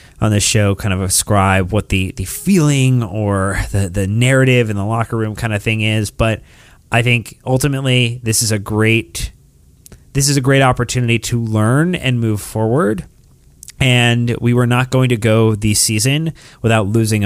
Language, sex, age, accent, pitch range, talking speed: English, male, 30-49, American, 100-125 Hz, 175 wpm